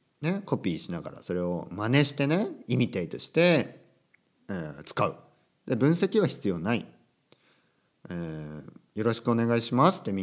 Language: Japanese